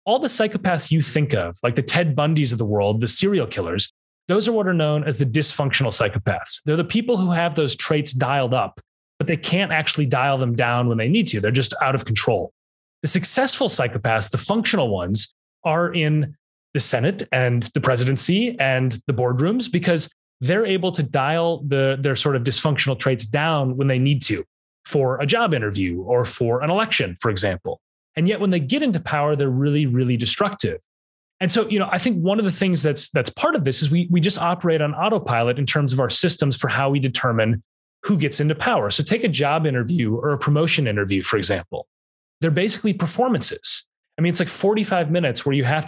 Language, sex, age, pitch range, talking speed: English, male, 30-49, 130-175 Hz, 210 wpm